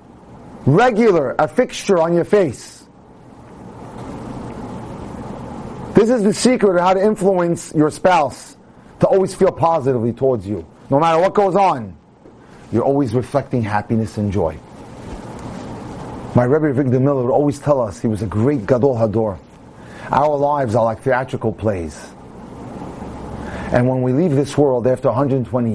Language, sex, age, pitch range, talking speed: English, male, 30-49, 115-155 Hz, 140 wpm